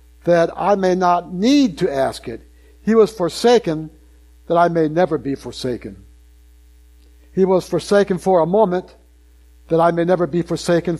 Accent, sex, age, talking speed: American, male, 60-79, 160 wpm